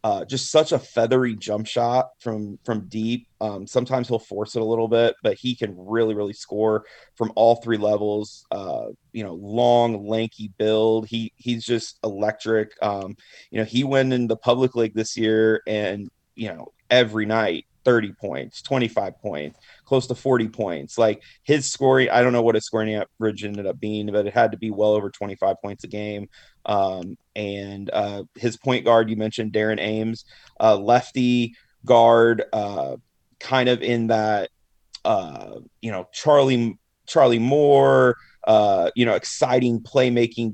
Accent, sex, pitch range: American, male, 110-120 Hz